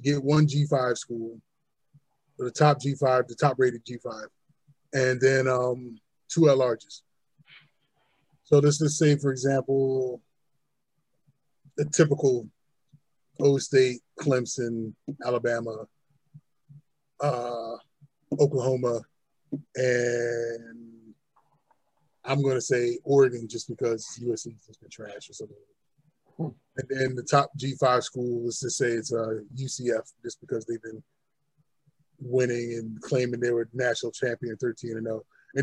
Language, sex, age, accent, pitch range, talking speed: English, male, 20-39, American, 125-150 Hz, 120 wpm